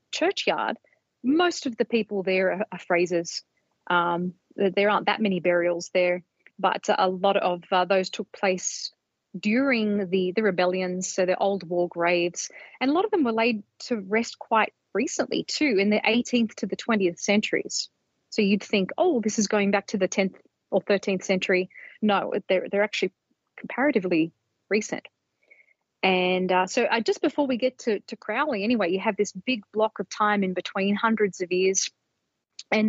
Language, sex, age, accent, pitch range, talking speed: English, female, 30-49, Australian, 185-230 Hz, 175 wpm